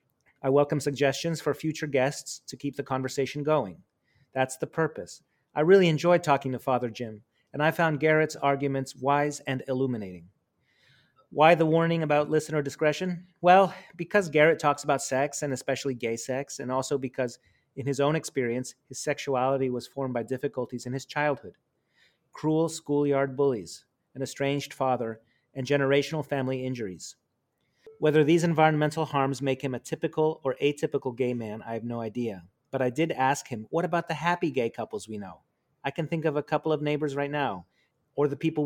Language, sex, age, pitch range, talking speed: English, male, 30-49, 130-155 Hz, 175 wpm